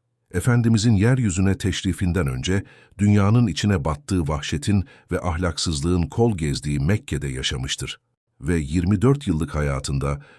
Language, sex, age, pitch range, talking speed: Turkish, male, 50-69, 80-110 Hz, 105 wpm